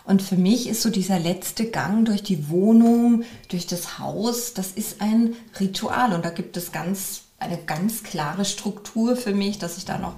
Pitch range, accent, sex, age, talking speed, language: 165-200 Hz, German, female, 30-49, 195 wpm, German